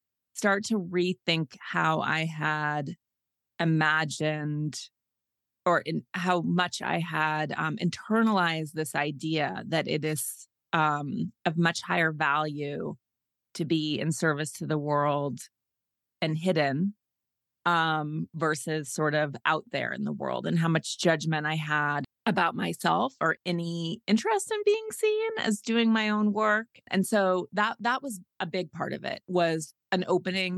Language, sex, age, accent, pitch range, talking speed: English, female, 30-49, American, 155-185 Hz, 145 wpm